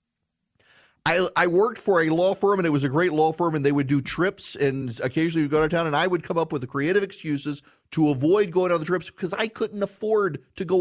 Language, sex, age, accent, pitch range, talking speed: English, male, 40-59, American, 100-155 Hz, 255 wpm